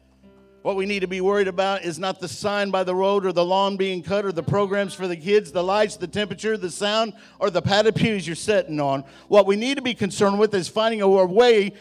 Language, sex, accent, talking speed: English, male, American, 245 wpm